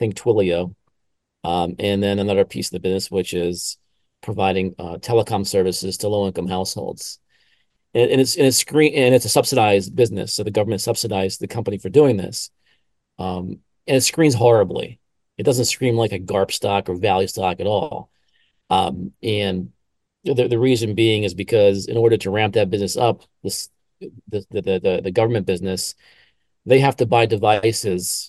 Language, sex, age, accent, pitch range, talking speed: English, male, 40-59, American, 95-120 Hz, 180 wpm